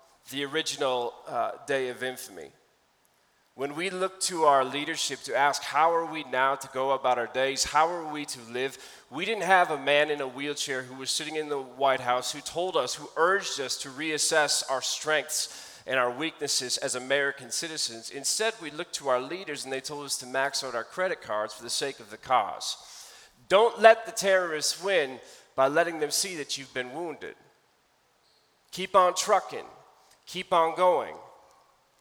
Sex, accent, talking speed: male, American, 185 wpm